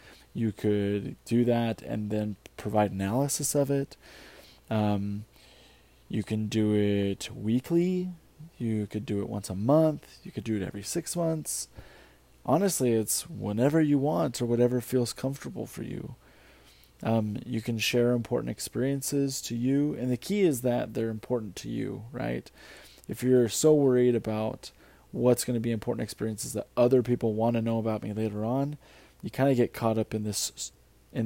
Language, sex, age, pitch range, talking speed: English, male, 20-39, 110-130 Hz, 170 wpm